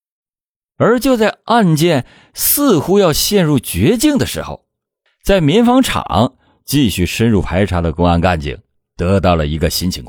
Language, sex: Chinese, male